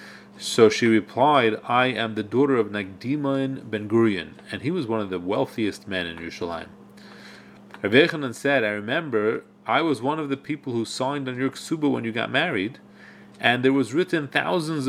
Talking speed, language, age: 175 wpm, English, 30-49